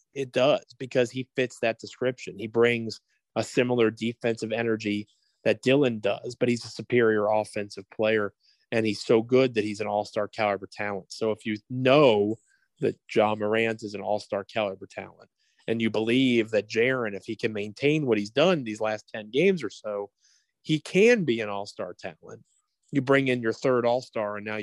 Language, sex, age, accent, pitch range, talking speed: English, male, 30-49, American, 105-125 Hz, 185 wpm